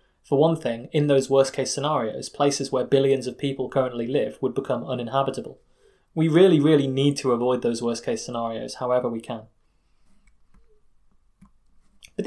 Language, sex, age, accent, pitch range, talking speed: English, male, 20-39, British, 130-175 Hz, 145 wpm